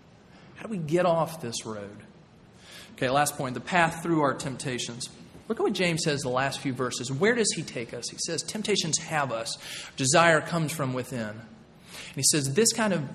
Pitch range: 145-190 Hz